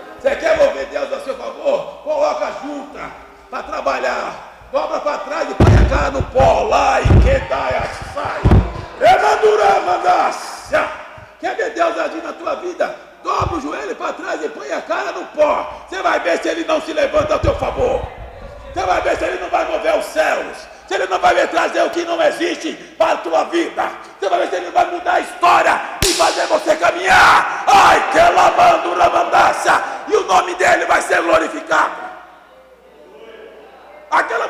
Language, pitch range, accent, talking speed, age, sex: Portuguese, 255-335 Hz, Brazilian, 180 wpm, 60-79, male